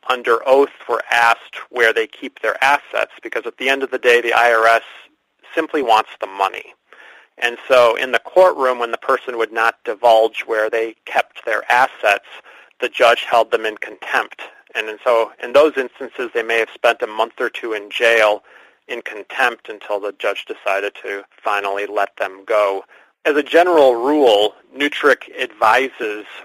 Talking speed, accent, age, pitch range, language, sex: 170 wpm, American, 40-59, 115-135 Hz, English, male